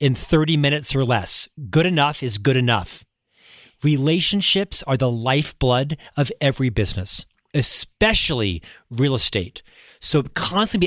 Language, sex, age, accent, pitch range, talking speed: English, male, 40-59, American, 130-170 Hz, 120 wpm